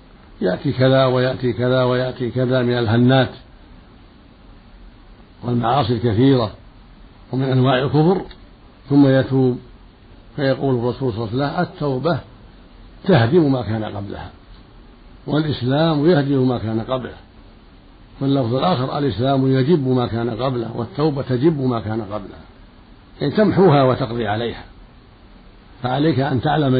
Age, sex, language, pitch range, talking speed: 60-79, male, Arabic, 115-140 Hz, 110 wpm